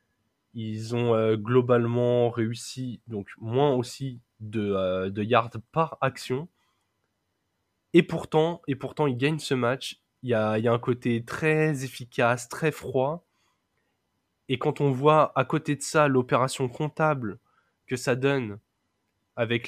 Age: 20-39